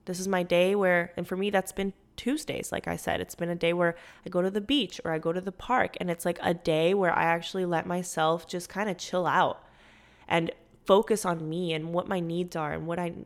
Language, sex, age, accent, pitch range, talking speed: English, female, 20-39, American, 170-205 Hz, 260 wpm